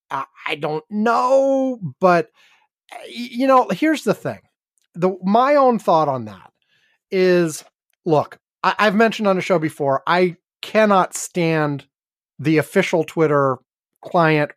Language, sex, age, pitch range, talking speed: English, male, 30-49, 140-190 Hz, 130 wpm